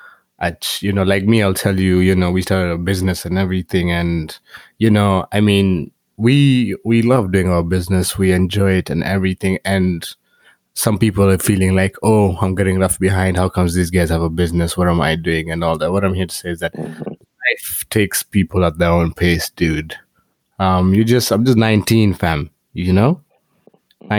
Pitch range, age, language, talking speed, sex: 90-105 Hz, 20-39, English, 205 wpm, male